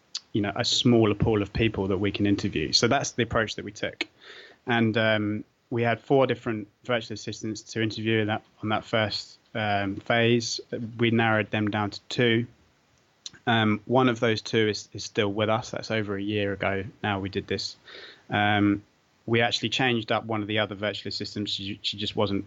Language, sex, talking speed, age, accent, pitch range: English, male, 200 wpm, 20-39, British, 100-115 Hz